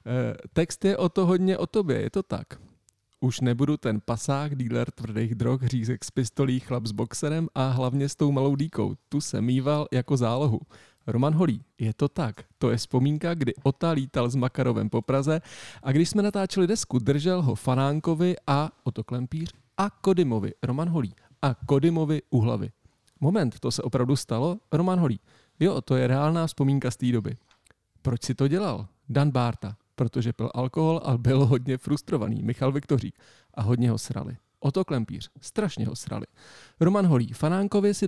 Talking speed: 180 wpm